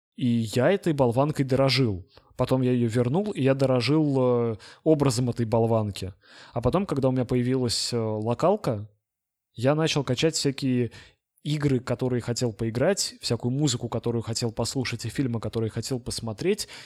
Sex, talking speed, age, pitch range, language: male, 140 wpm, 20-39, 115-135 Hz, Russian